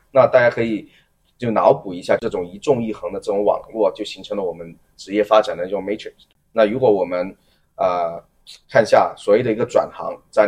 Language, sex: Chinese, male